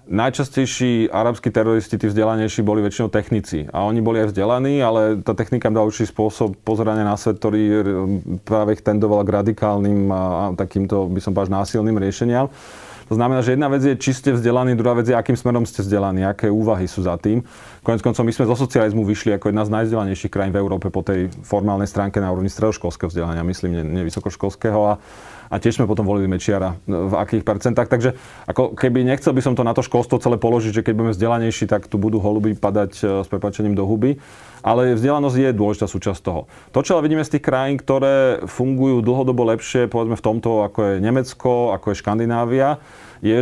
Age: 30-49